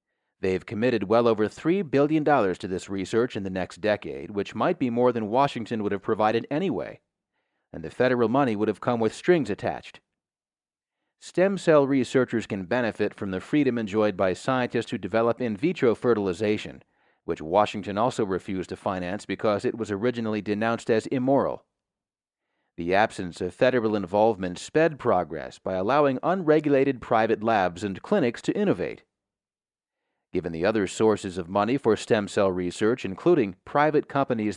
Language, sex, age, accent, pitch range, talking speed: English, male, 30-49, American, 100-130 Hz, 160 wpm